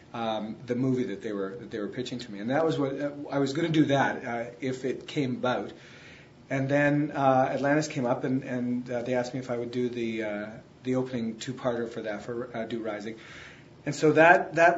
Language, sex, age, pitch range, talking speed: English, male, 40-59, 125-155 Hz, 245 wpm